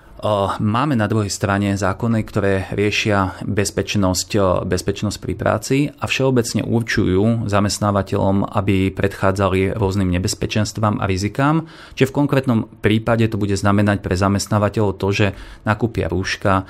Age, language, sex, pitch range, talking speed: 30-49, Slovak, male, 95-110 Hz, 120 wpm